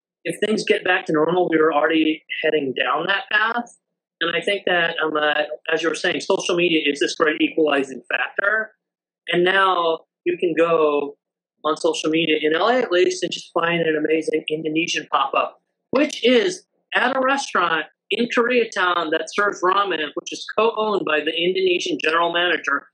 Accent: American